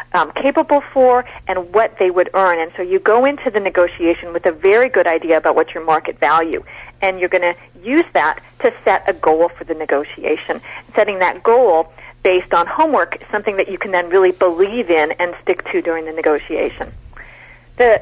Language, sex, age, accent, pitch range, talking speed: English, female, 40-59, American, 175-270 Hz, 200 wpm